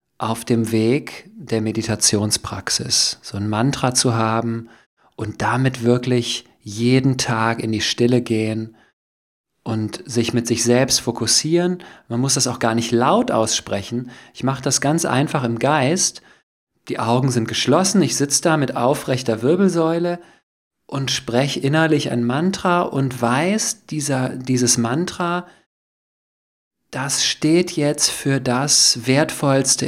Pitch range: 115-140 Hz